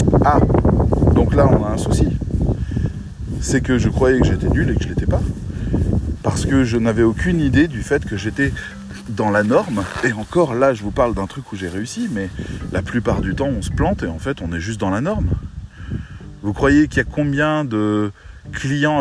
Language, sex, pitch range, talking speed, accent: French, male, 95-135 Hz, 210 wpm, French